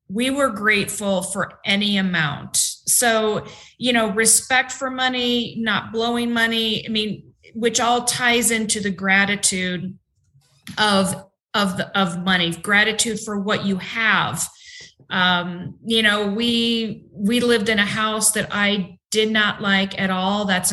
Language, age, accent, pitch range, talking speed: English, 40-59, American, 190-225 Hz, 145 wpm